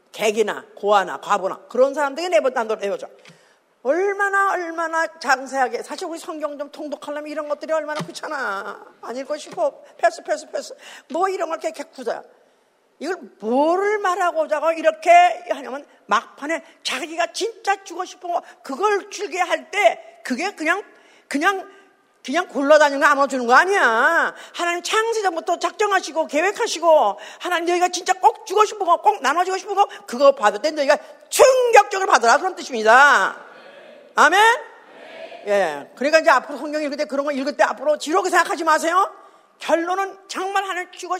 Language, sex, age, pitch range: Korean, female, 40-59, 290-375 Hz